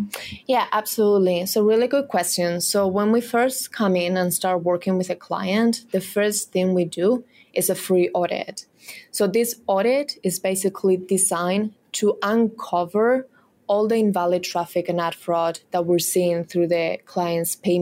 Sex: female